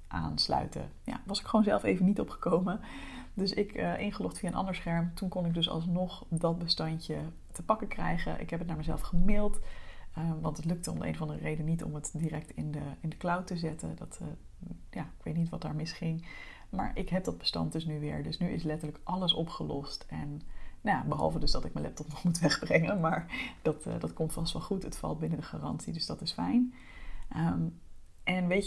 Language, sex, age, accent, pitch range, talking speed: Dutch, female, 30-49, Dutch, 150-180 Hz, 230 wpm